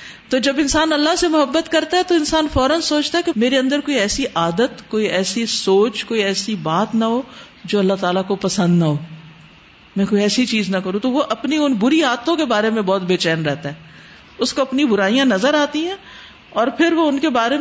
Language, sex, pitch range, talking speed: Urdu, female, 190-290 Hz, 230 wpm